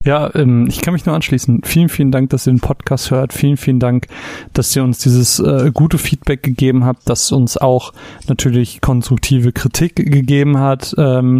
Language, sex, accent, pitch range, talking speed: German, male, German, 130-150 Hz, 175 wpm